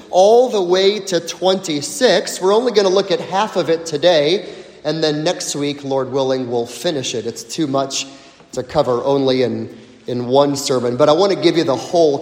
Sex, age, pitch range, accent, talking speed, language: male, 30-49, 160-250 Hz, American, 205 wpm, English